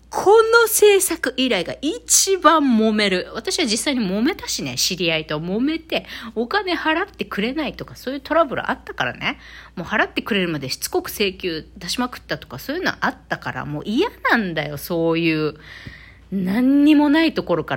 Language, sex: Japanese, female